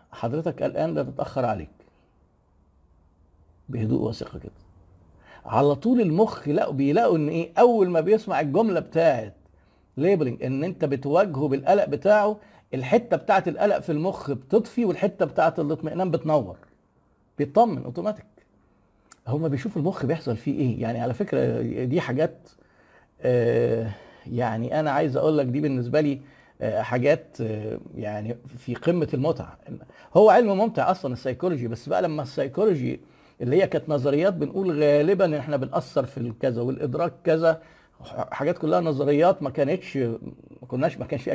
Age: 50-69